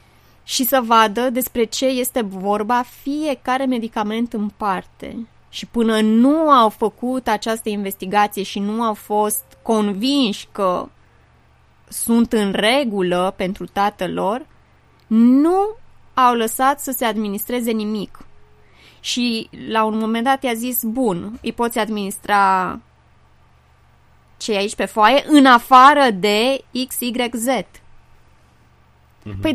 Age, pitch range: 20-39, 210-265 Hz